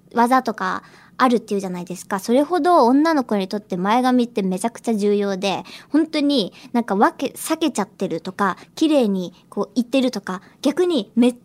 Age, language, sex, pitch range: 20-39, Japanese, male, 200-290 Hz